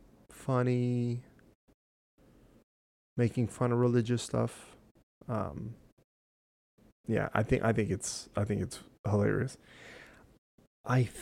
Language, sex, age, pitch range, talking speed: English, male, 20-39, 105-130 Hz, 95 wpm